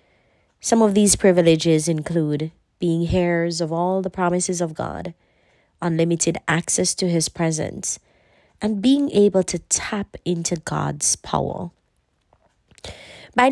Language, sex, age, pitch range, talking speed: English, female, 20-39, 160-195 Hz, 120 wpm